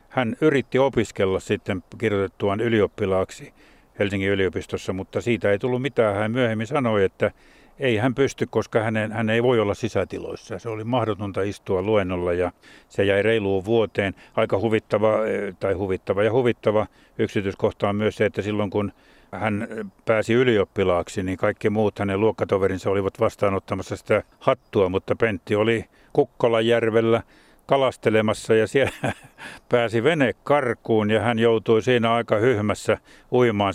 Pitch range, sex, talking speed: 100-120 Hz, male, 140 wpm